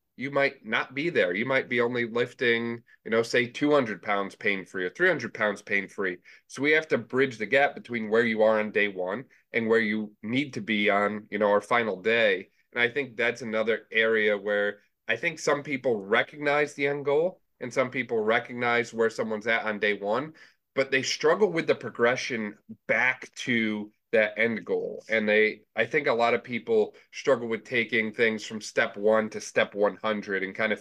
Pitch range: 105-125 Hz